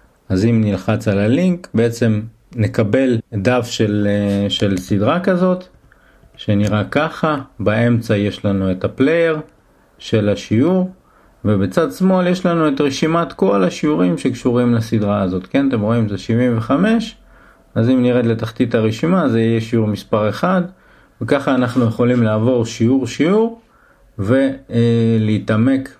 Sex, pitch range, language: male, 105-130 Hz, Italian